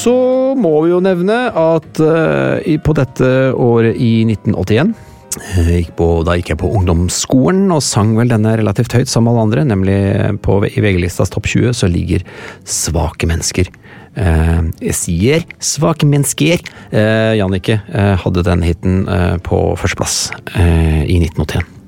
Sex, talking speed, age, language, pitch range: male, 130 wpm, 40-59, English, 95-125 Hz